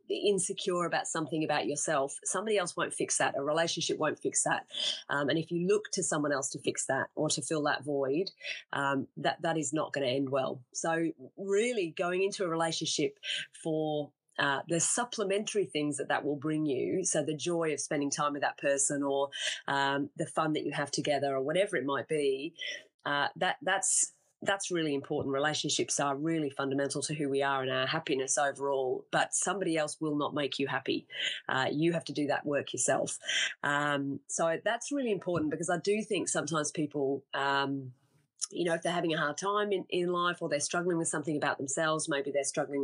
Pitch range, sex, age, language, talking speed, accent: 140-175 Hz, female, 30-49, English, 200 wpm, Australian